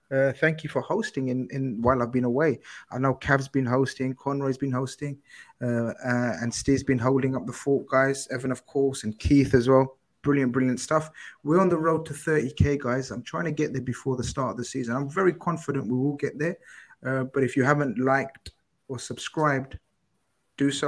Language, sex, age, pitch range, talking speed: English, male, 20-39, 130-200 Hz, 215 wpm